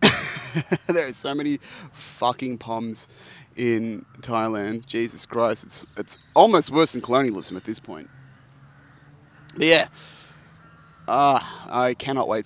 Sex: male